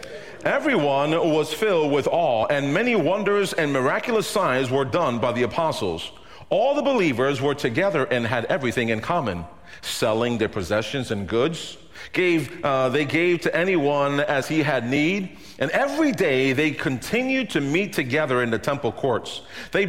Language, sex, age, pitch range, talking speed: English, male, 40-59, 115-155 Hz, 165 wpm